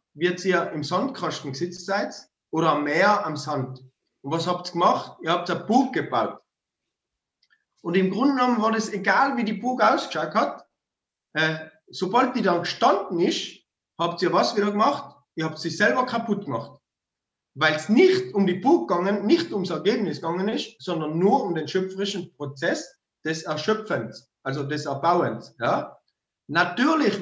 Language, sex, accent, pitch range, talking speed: German, male, German, 160-225 Hz, 165 wpm